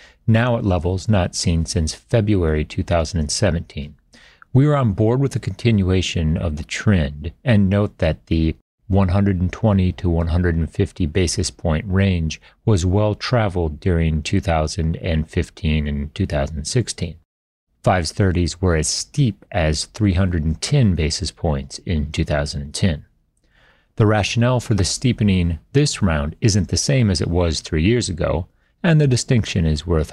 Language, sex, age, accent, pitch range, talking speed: English, male, 40-59, American, 80-105 Hz, 130 wpm